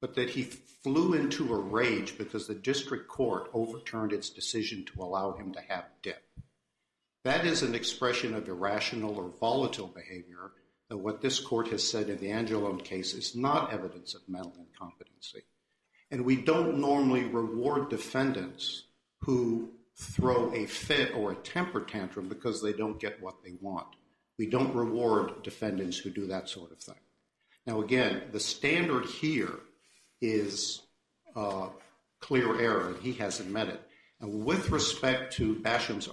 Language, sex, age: English, male, 60-79